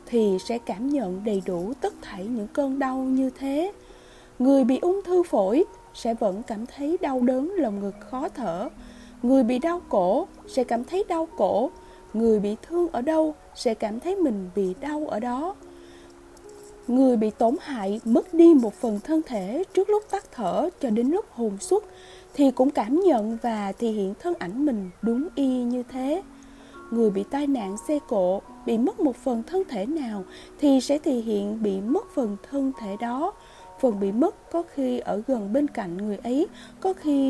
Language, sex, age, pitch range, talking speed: Vietnamese, female, 20-39, 220-305 Hz, 190 wpm